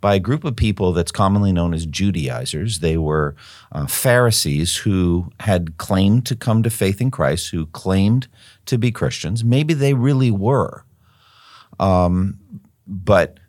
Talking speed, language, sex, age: 150 wpm, English, male, 50-69